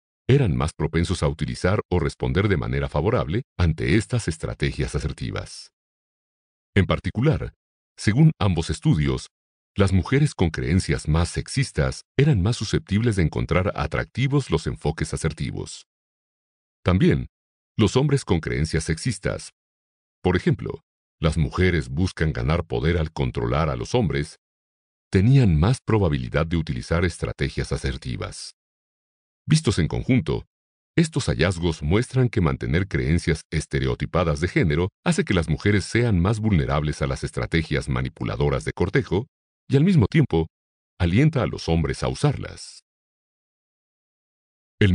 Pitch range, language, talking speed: 70-105 Hz, Spanish, 125 wpm